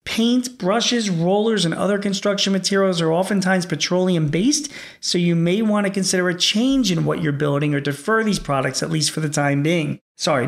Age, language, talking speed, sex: 40-59, English, 190 wpm, male